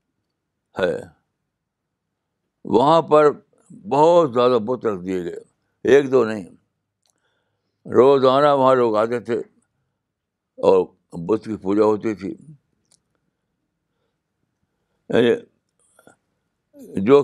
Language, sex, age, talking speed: Urdu, male, 60-79, 85 wpm